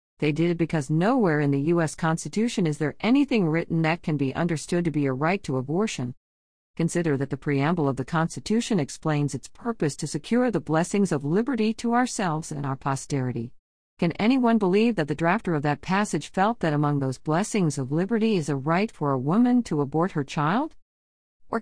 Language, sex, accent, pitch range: English, female, American, 145-195 Hz